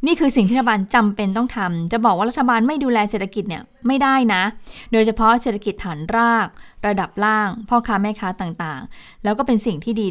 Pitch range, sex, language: 190-235 Hz, female, Thai